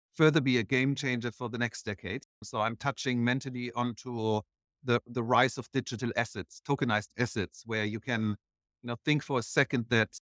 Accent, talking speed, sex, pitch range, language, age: German, 175 wpm, male, 115-135 Hz, English, 50-69